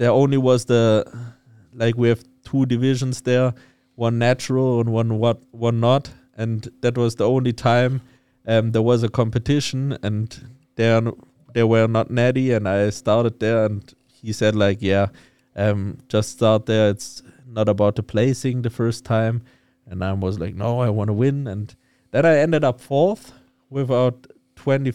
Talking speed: 175 wpm